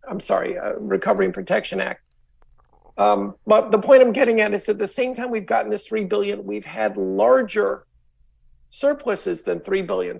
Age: 50-69